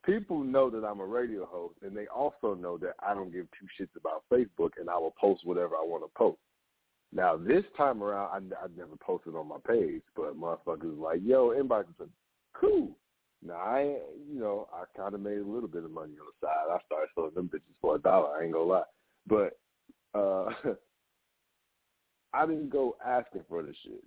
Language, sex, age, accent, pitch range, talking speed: English, male, 40-59, American, 100-140 Hz, 205 wpm